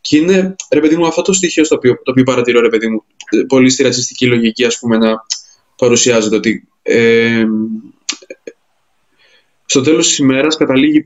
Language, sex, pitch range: Greek, male, 120-145 Hz